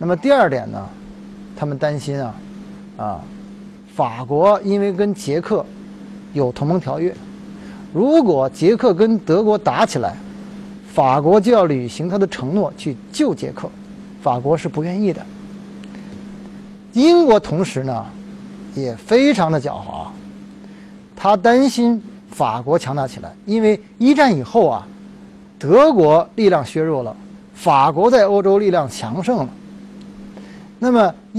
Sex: male